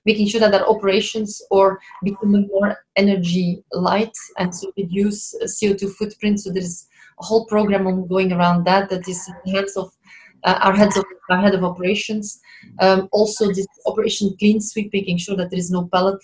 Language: German